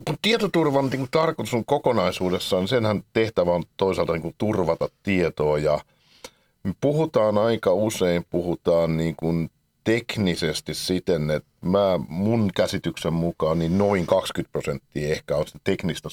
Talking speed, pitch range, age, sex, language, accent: 110 wpm, 80-120 Hz, 50-69, male, Finnish, native